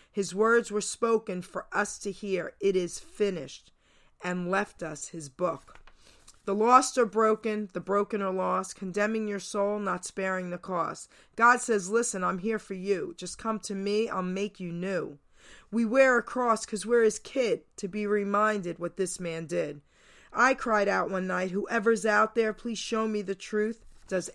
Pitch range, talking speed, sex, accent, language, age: 175-210 Hz, 185 wpm, female, American, English, 40-59